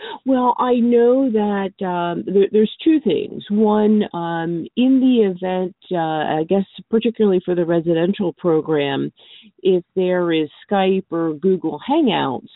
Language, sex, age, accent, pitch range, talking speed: English, female, 50-69, American, 155-190 Hz, 135 wpm